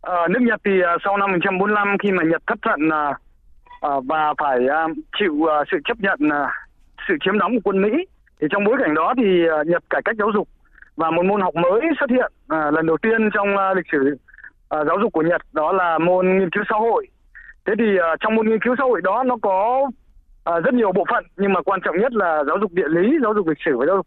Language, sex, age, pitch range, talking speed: Vietnamese, male, 20-39, 160-215 Hz, 225 wpm